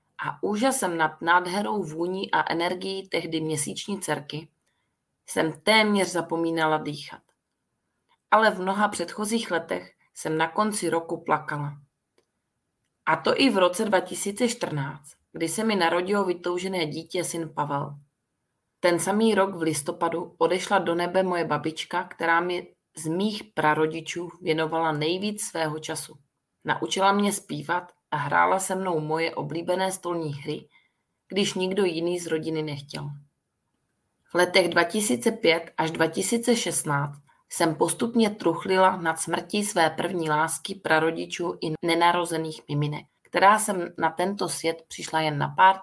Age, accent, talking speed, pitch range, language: 30-49, native, 130 wpm, 155-190 Hz, Czech